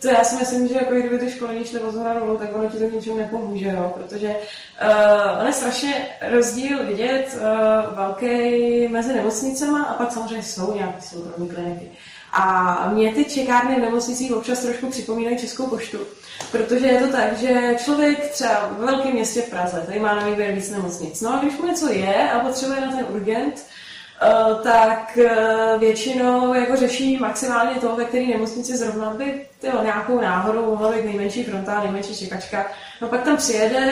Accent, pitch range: native, 215-255 Hz